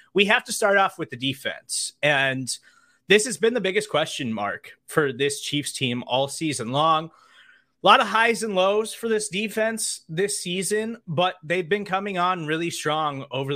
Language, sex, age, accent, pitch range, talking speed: English, male, 30-49, American, 135-190 Hz, 185 wpm